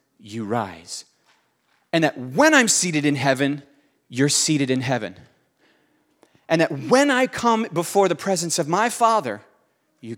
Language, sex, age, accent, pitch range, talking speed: English, male, 30-49, American, 125-165 Hz, 145 wpm